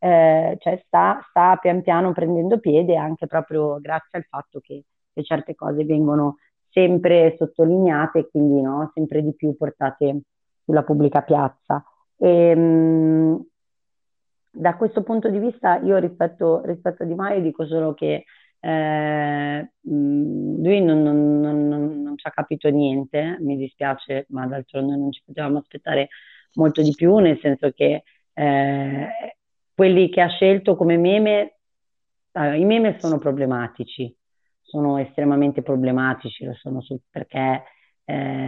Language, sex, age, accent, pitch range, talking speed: Italian, female, 30-49, native, 140-170 Hz, 135 wpm